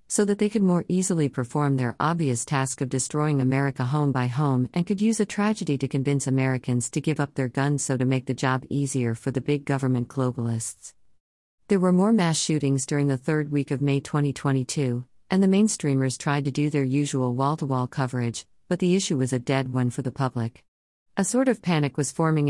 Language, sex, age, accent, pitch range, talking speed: English, female, 50-69, American, 130-165 Hz, 210 wpm